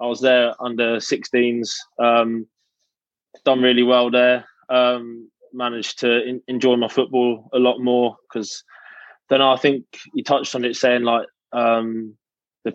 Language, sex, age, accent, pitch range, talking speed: English, male, 20-39, British, 115-125 Hz, 140 wpm